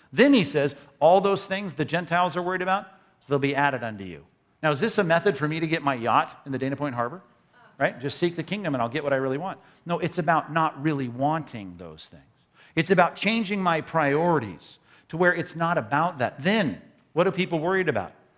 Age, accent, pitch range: 50-69, American, 135-185 Hz